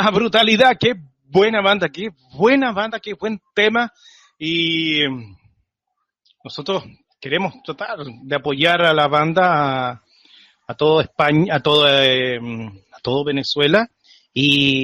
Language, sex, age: Spanish, male, 30-49